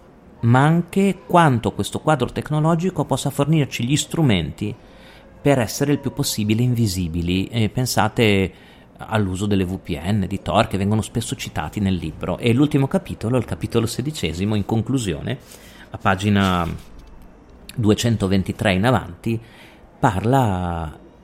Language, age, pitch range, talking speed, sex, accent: Italian, 40-59, 95-125 Hz, 125 wpm, male, native